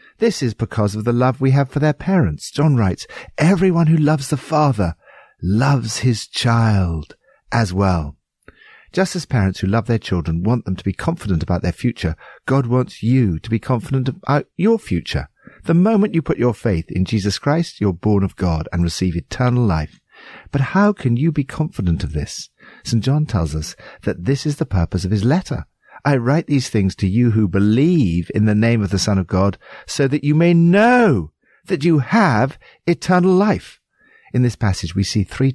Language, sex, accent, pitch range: English, male, British, 95-150 Hz